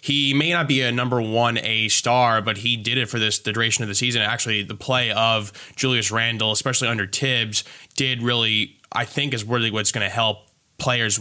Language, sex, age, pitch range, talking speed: English, male, 20-39, 100-115 Hz, 210 wpm